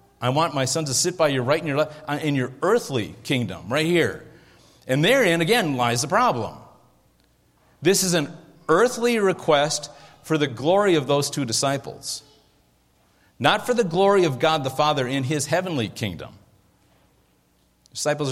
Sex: male